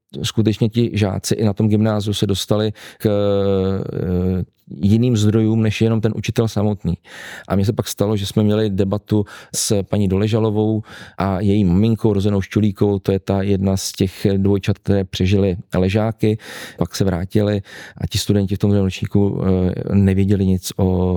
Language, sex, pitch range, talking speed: Czech, male, 95-105 Hz, 160 wpm